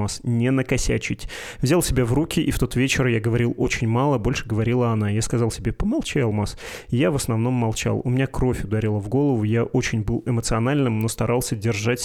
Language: Russian